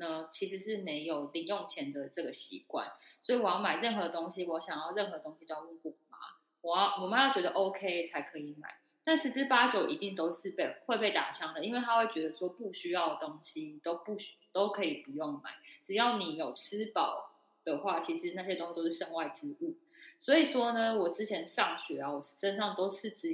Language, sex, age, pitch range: Chinese, female, 20-39, 170-275 Hz